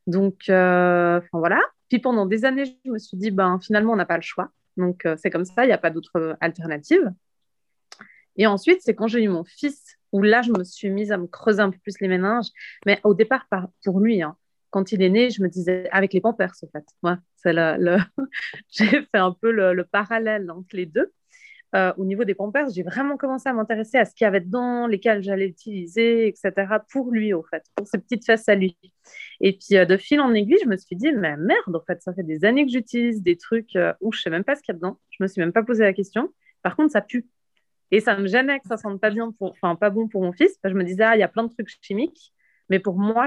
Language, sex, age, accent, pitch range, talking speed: French, female, 30-49, French, 180-230 Hz, 260 wpm